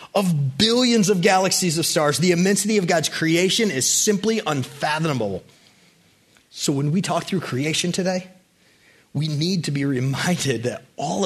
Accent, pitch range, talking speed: American, 150-200 Hz, 150 wpm